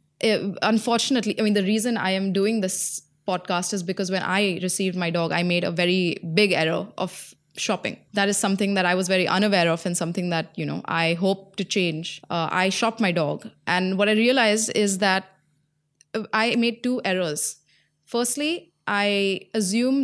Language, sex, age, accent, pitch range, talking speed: English, female, 20-39, Indian, 175-210 Hz, 185 wpm